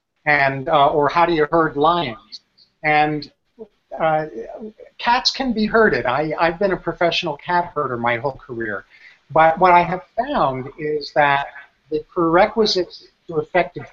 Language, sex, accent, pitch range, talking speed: English, male, American, 145-185 Hz, 150 wpm